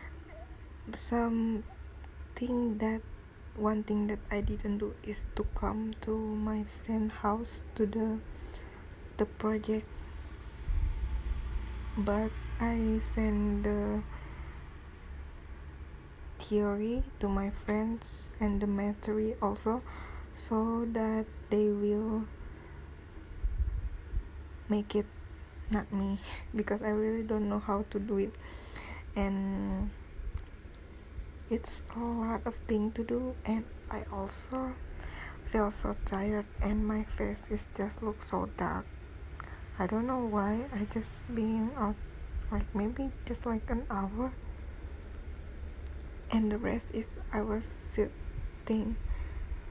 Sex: female